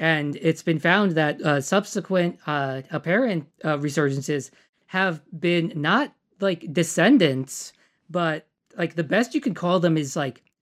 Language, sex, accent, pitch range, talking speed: English, male, American, 140-170 Hz, 145 wpm